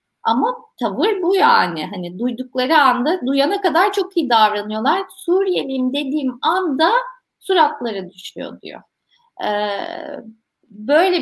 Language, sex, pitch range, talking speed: Turkish, female, 215-315 Hz, 105 wpm